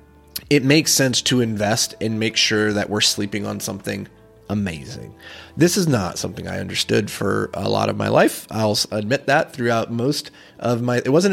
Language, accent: English, American